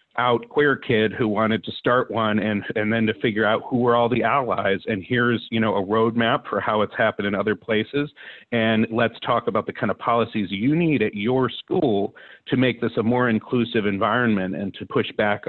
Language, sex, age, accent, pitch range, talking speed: English, male, 40-59, American, 105-120 Hz, 220 wpm